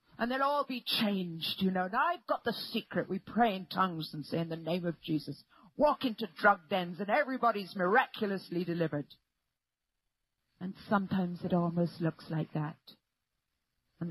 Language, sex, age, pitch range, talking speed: English, female, 40-59, 165-225 Hz, 165 wpm